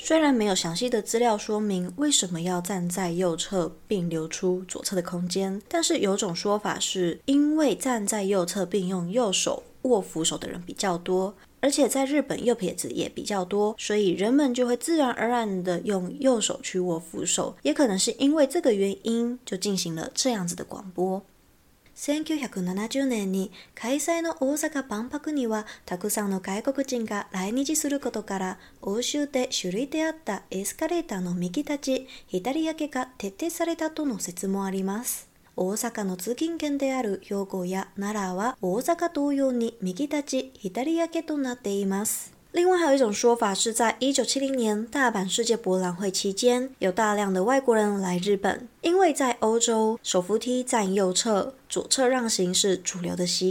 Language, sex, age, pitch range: Chinese, female, 20-39, 190-265 Hz